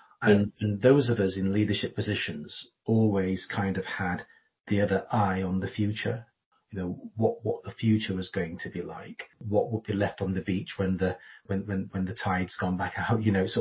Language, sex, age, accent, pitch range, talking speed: English, male, 30-49, British, 95-115 Hz, 205 wpm